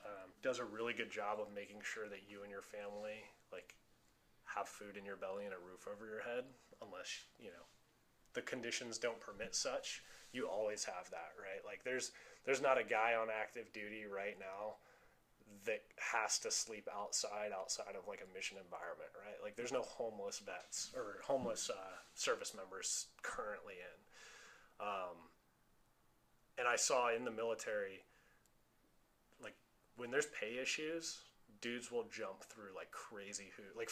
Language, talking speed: English, 165 wpm